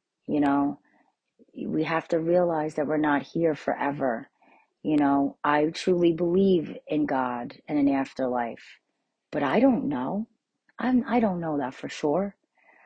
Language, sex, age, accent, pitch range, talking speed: English, female, 40-59, American, 150-220 Hz, 155 wpm